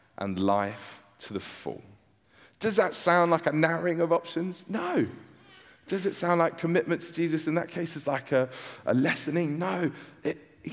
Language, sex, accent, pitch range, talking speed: English, male, British, 120-165 Hz, 175 wpm